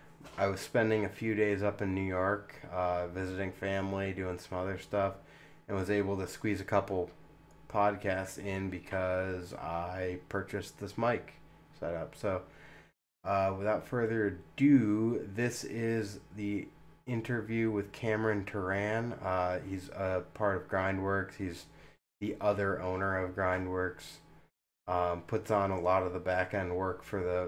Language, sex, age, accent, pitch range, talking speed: English, male, 20-39, American, 90-105 Hz, 150 wpm